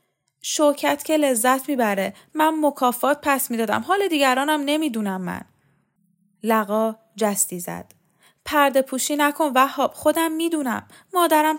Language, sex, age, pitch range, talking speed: Persian, female, 10-29, 210-300 Hz, 120 wpm